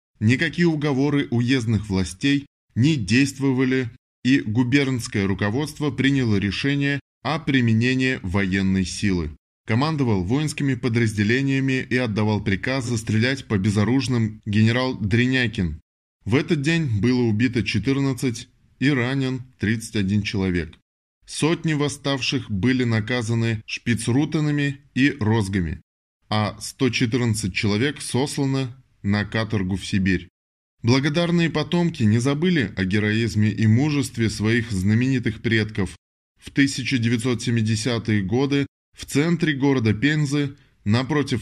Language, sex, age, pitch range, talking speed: Russian, male, 20-39, 105-135 Hz, 100 wpm